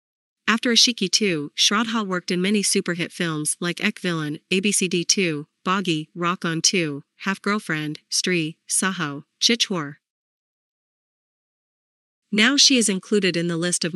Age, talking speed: 30-49, 135 wpm